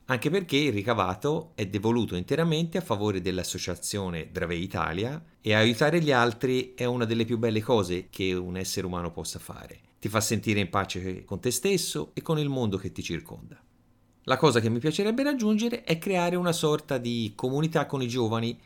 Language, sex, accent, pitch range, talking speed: Italian, male, native, 95-145 Hz, 185 wpm